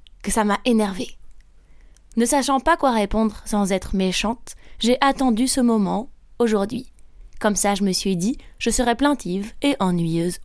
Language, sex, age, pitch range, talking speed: French, female, 20-39, 190-235 Hz, 160 wpm